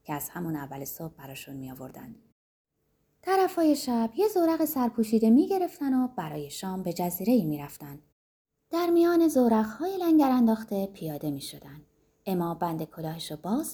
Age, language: 30-49, Persian